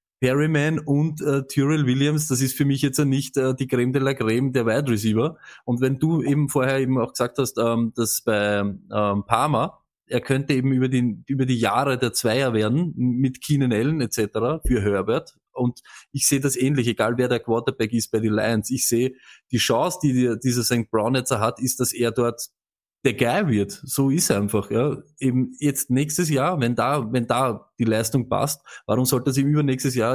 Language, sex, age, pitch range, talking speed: German, male, 20-39, 120-140 Hz, 215 wpm